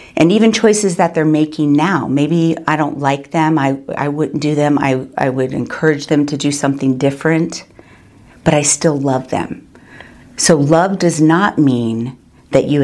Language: English